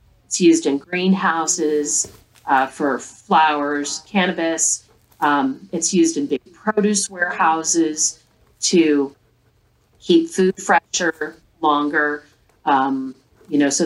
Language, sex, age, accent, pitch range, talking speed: English, female, 40-59, American, 140-180 Hz, 105 wpm